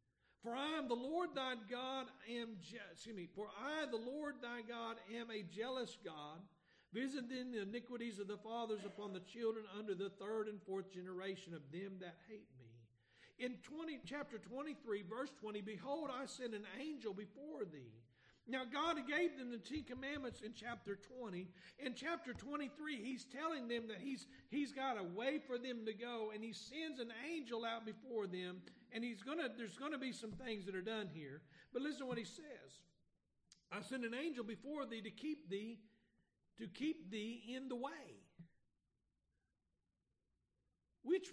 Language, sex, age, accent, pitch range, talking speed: English, male, 50-69, American, 210-290 Hz, 180 wpm